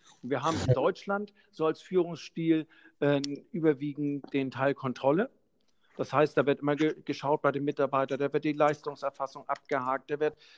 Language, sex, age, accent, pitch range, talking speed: German, male, 50-69, German, 135-155 Hz, 160 wpm